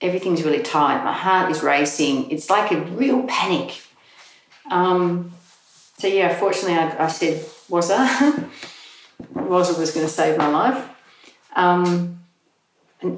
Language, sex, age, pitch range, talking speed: English, female, 40-59, 160-200 Hz, 125 wpm